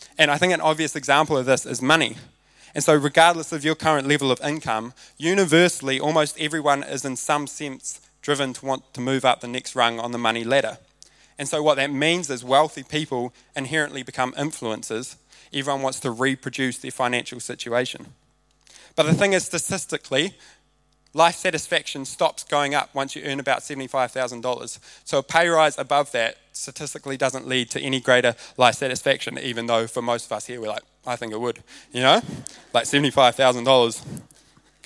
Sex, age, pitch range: male, 20-39, 130-155 Hz